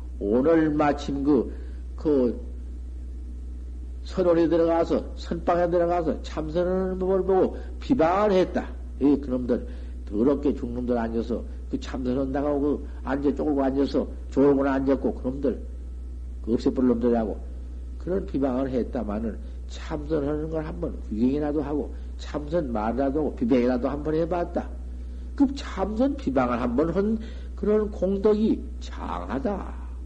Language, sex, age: Korean, male, 50-69